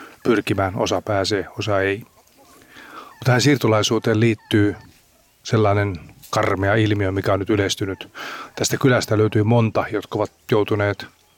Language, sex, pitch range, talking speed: Finnish, male, 100-115 Hz, 120 wpm